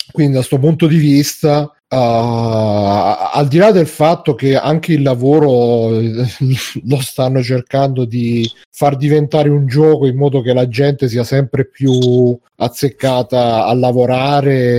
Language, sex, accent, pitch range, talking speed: Italian, male, native, 120-145 Hz, 140 wpm